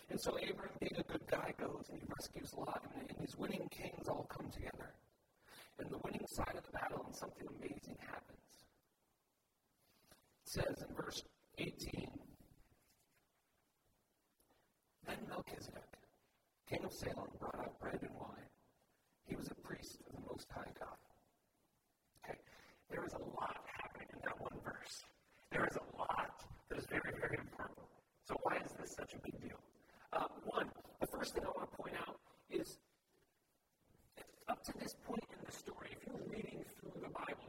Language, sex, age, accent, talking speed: English, male, 50-69, American, 170 wpm